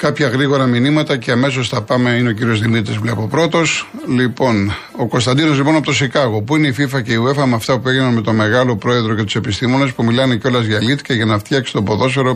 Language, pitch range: Greek, 115-150 Hz